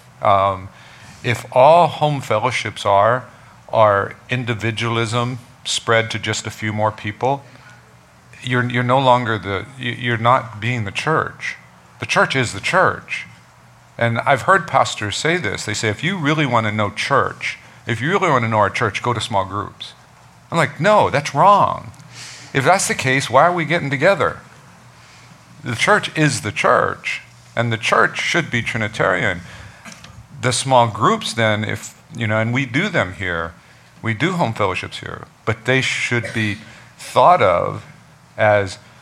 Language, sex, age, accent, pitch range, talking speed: English, male, 50-69, American, 105-130 Hz, 165 wpm